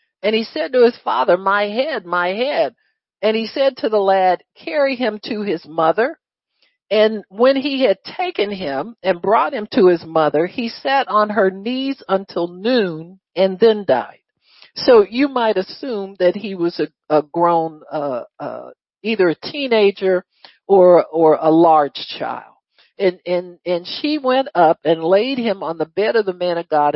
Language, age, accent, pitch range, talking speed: English, 50-69, American, 170-235 Hz, 180 wpm